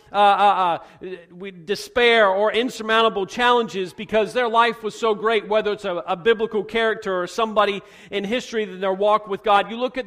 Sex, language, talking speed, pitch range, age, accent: male, English, 185 wpm, 200-235 Hz, 40-59, American